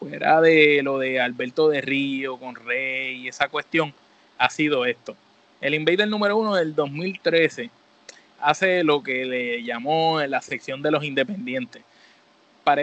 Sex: male